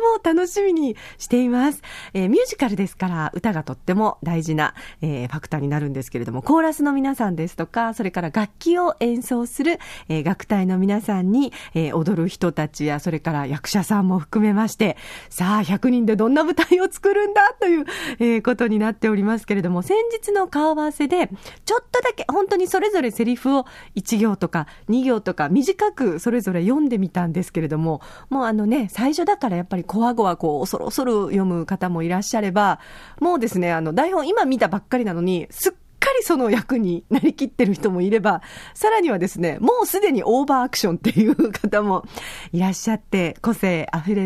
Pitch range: 175-260 Hz